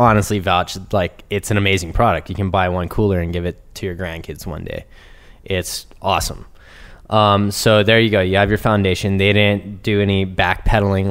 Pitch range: 90-110 Hz